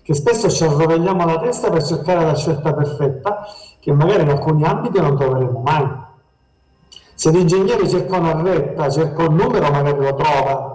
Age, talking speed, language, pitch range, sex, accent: 50-69, 165 wpm, Italian, 140-180 Hz, male, native